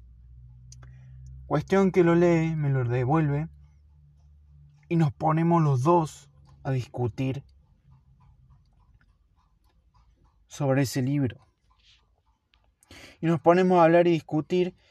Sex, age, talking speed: male, 30-49, 95 wpm